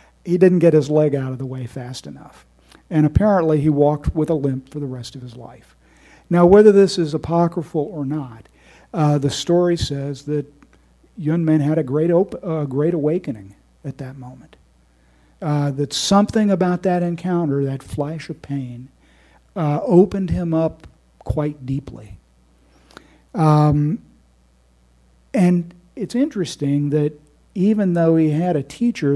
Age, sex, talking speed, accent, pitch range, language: 50-69, male, 150 wpm, American, 135-170 Hz, English